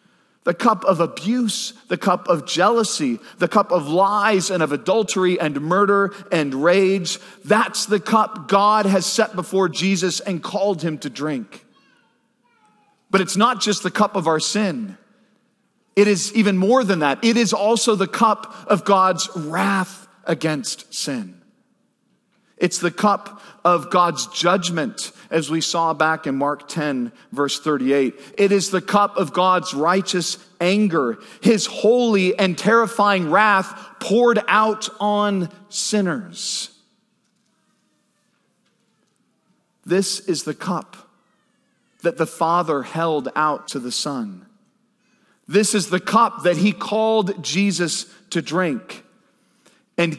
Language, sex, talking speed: English, male, 135 wpm